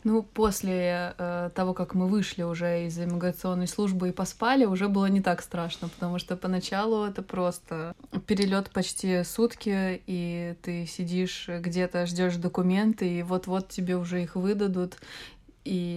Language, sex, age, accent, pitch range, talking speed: Russian, female, 20-39, native, 175-205 Hz, 145 wpm